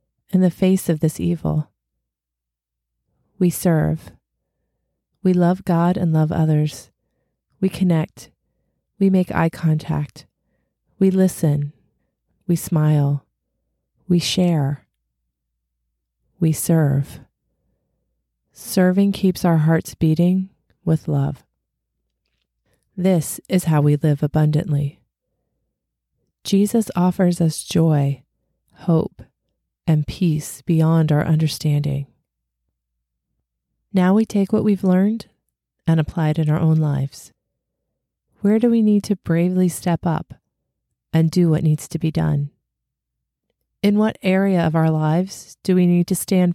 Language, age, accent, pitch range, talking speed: English, 30-49, American, 140-180 Hz, 115 wpm